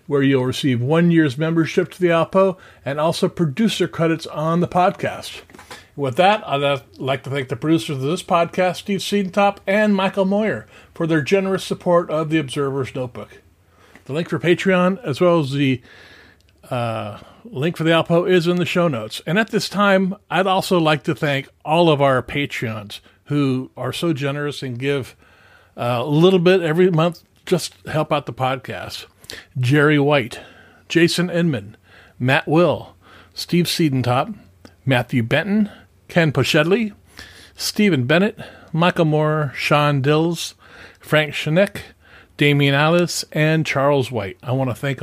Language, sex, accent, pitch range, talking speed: English, male, American, 130-175 Hz, 155 wpm